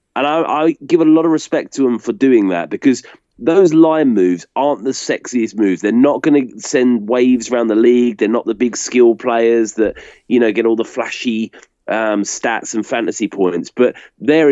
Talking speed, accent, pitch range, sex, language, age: 205 wpm, British, 100-125 Hz, male, English, 30-49